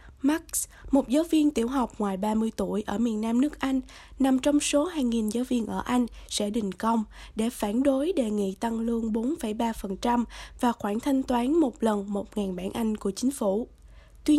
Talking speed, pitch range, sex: 190 wpm, 220-280 Hz, female